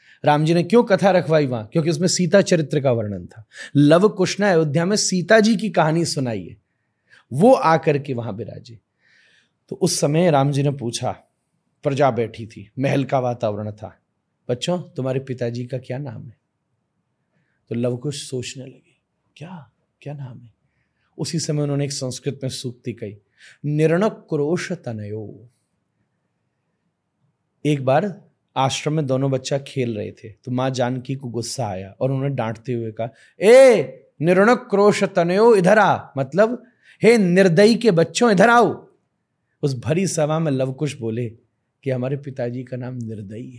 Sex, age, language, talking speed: male, 30-49, Hindi, 155 wpm